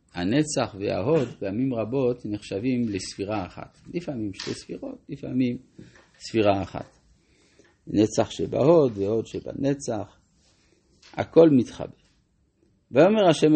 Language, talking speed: Hebrew, 95 wpm